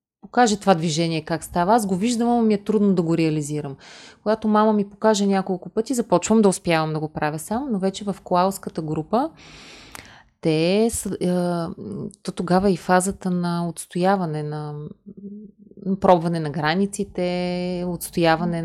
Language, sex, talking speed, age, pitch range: Bulgarian, female, 145 wpm, 30-49, 170-210 Hz